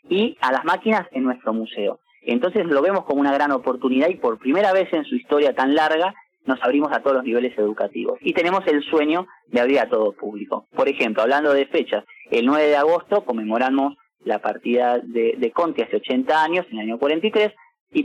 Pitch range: 125-195 Hz